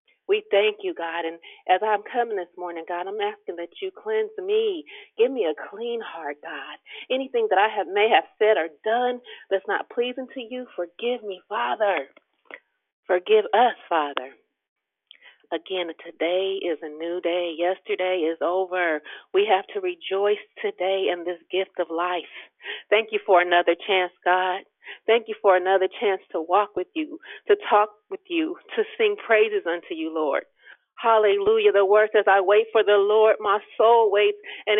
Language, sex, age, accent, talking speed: English, female, 40-59, American, 170 wpm